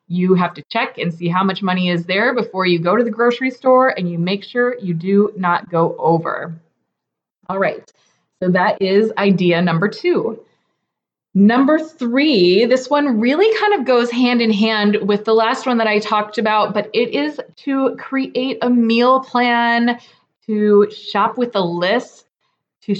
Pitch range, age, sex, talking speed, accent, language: 195-245 Hz, 20-39, female, 175 wpm, American, English